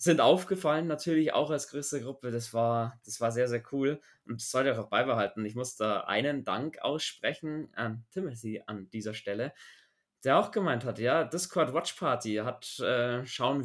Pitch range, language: 115-135 Hz, German